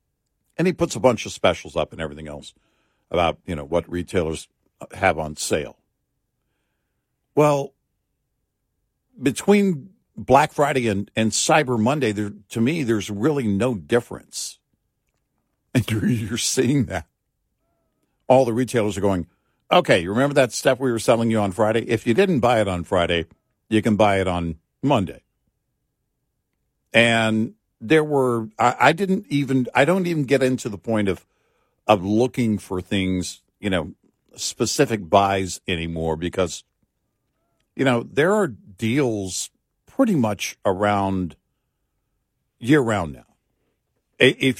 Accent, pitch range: American, 95-130 Hz